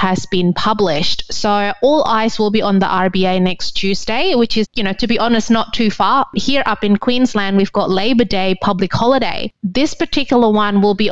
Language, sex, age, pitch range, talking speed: English, female, 20-39, 195-220 Hz, 205 wpm